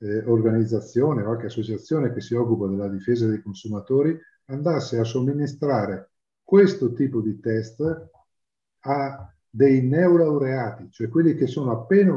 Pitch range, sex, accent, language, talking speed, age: 105-150 Hz, male, native, Italian, 135 wpm, 50-69